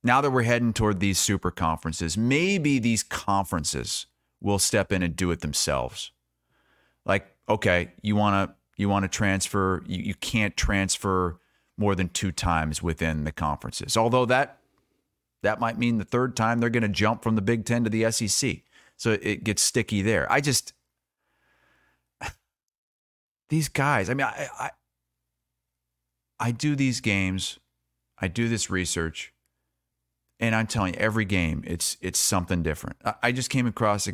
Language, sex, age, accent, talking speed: English, male, 30-49, American, 160 wpm